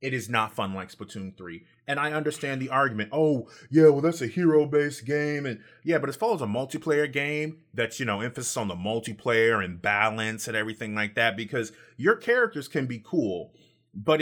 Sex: male